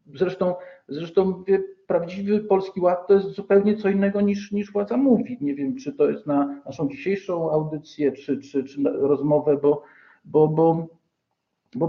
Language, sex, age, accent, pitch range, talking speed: Polish, male, 50-69, native, 145-195 Hz, 165 wpm